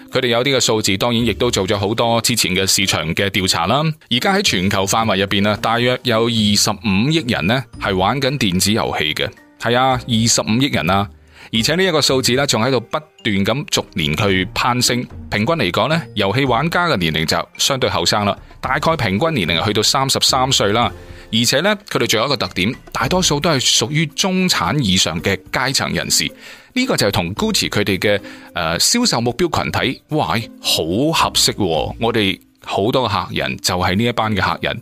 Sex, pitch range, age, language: male, 100-135 Hz, 20-39, Chinese